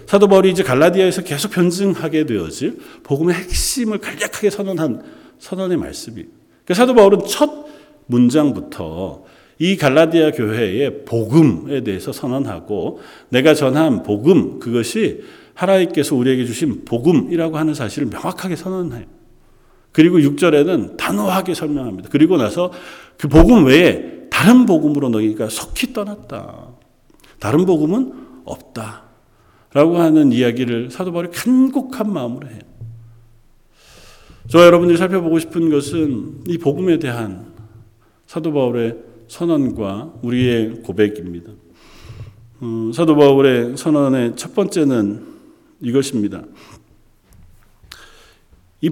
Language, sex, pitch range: Korean, male, 115-175 Hz